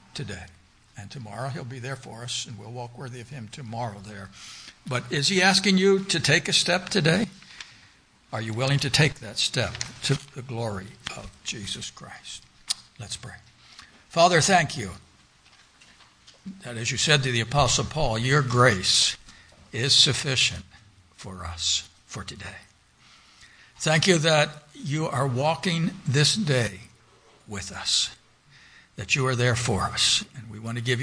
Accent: American